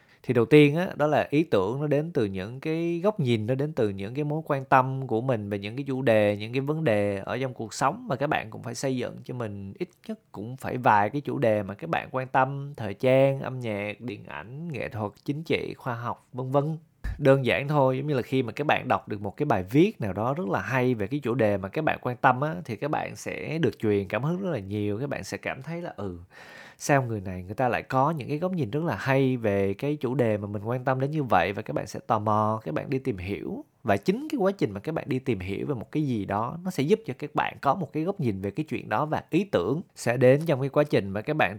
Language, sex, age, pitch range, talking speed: Vietnamese, male, 20-39, 110-150 Hz, 290 wpm